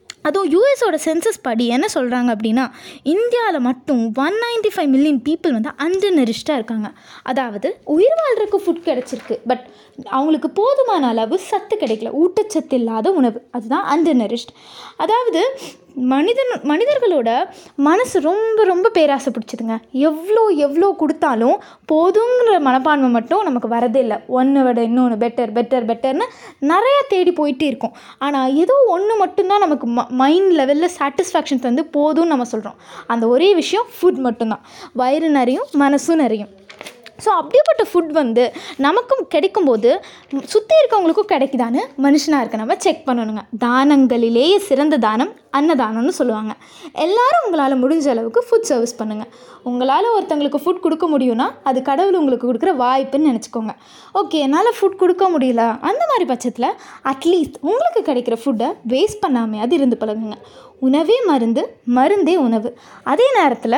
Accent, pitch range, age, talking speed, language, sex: native, 250-365 Hz, 20-39, 130 wpm, Tamil, female